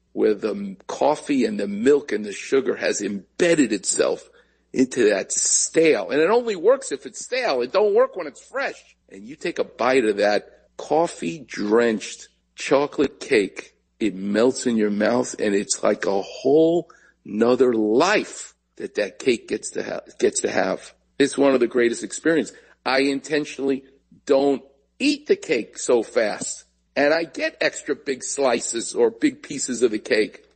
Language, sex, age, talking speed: English, male, 50-69, 165 wpm